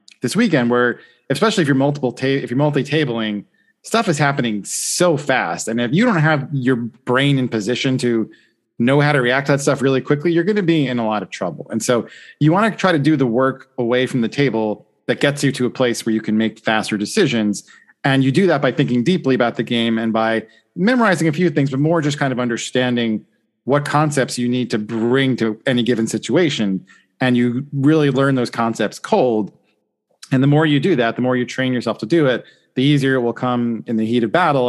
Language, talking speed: English, 230 wpm